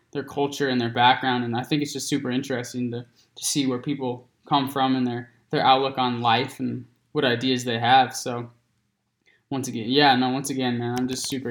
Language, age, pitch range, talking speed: English, 20-39, 125-135 Hz, 215 wpm